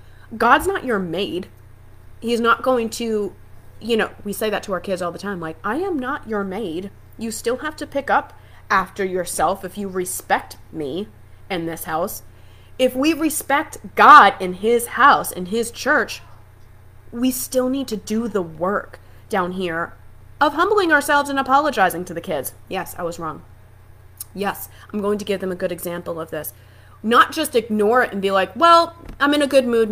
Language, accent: English, American